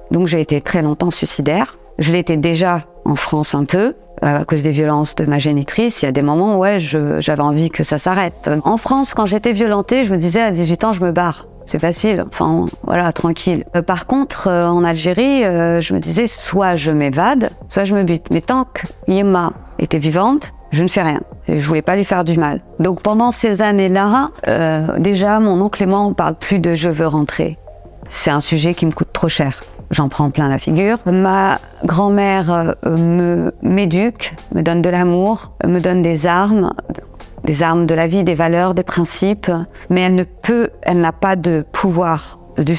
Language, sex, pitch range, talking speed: French, female, 160-200 Hz, 205 wpm